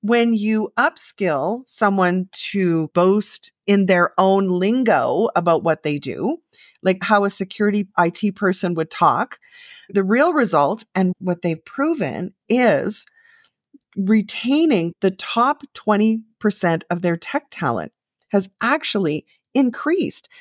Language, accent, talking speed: English, American, 120 wpm